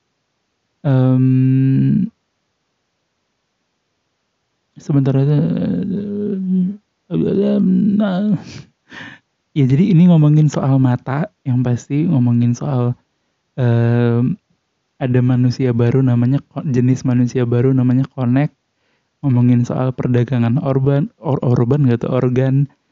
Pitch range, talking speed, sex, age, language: 125-140 Hz, 90 wpm, male, 20-39, Indonesian